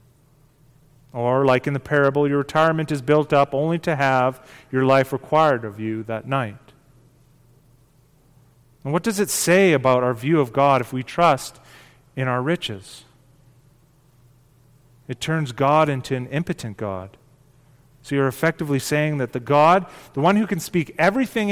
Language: English